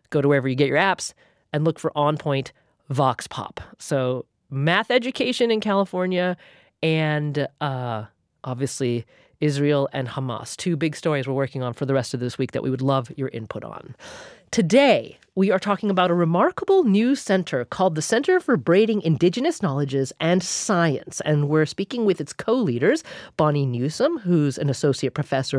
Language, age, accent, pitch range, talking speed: English, 30-49, American, 140-195 Hz, 175 wpm